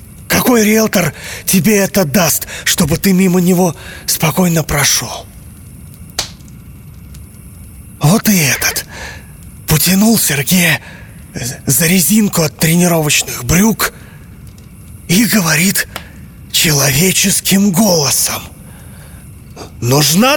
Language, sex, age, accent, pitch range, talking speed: Russian, male, 30-49, native, 125-195 Hz, 75 wpm